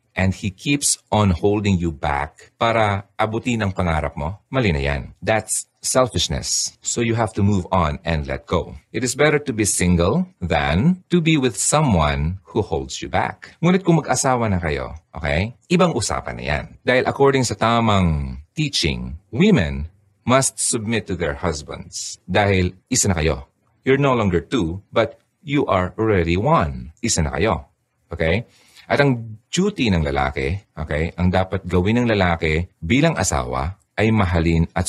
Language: Filipino